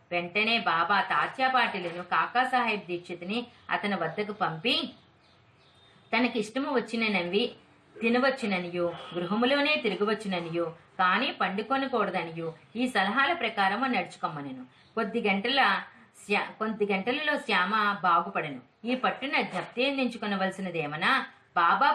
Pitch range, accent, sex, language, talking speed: 175-245 Hz, native, female, Telugu, 90 wpm